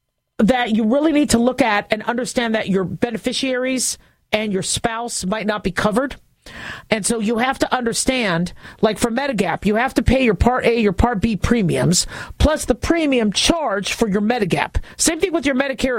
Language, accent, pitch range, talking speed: English, American, 205-255 Hz, 190 wpm